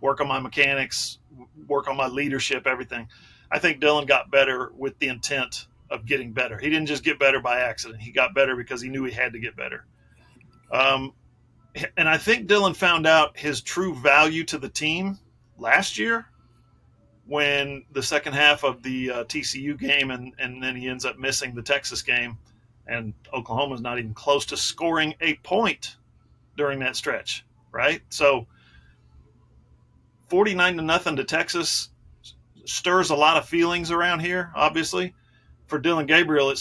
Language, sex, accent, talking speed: English, male, American, 170 wpm